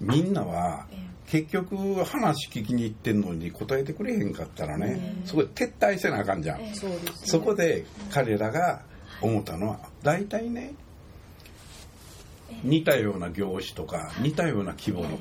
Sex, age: male, 60-79